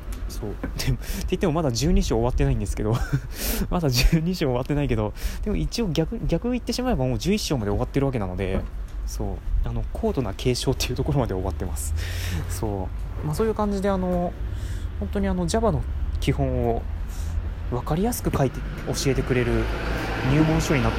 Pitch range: 95-140 Hz